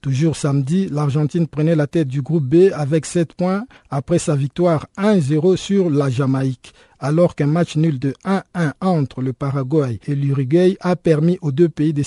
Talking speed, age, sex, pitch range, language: 180 wpm, 50-69, male, 145-180 Hz, French